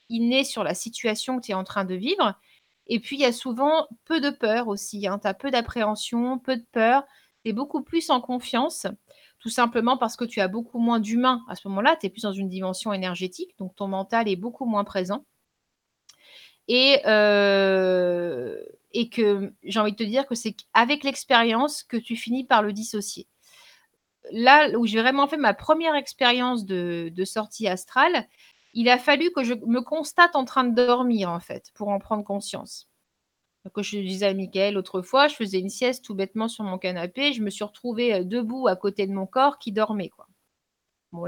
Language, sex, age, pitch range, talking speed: French, female, 30-49, 195-250 Hz, 200 wpm